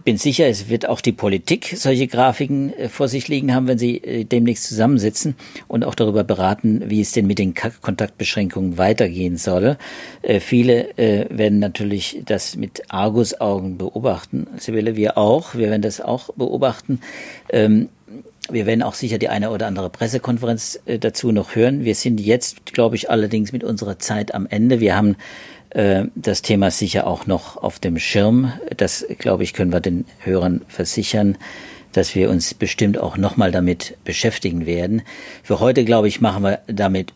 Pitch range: 95-115 Hz